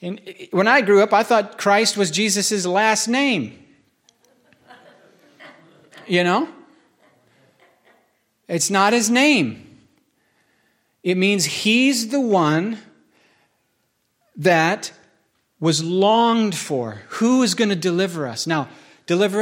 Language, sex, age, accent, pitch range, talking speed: English, male, 40-59, American, 160-215 Hz, 105 wpm